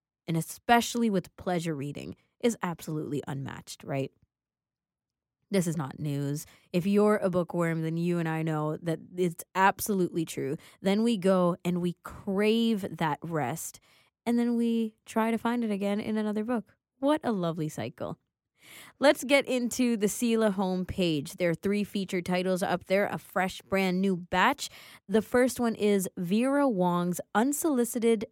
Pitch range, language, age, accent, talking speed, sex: 160-220 Hz, English, 20-39, American, 160 wpm, female